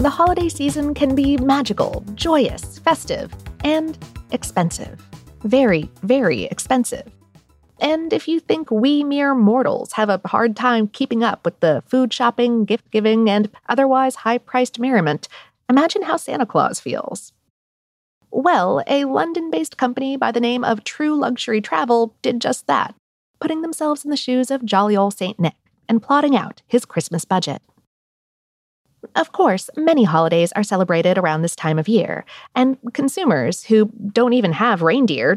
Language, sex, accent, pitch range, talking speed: English, female, American, 195-275 Hz, 150 wpm